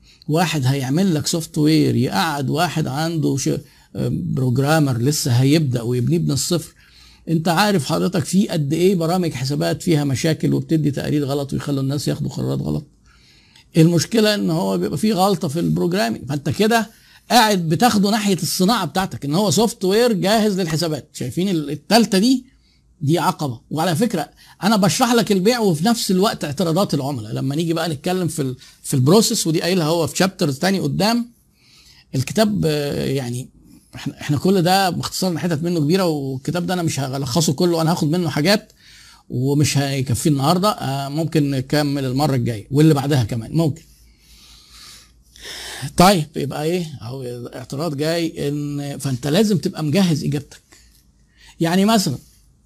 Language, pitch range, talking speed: Arabic, 140-185 Hz, 145 wpm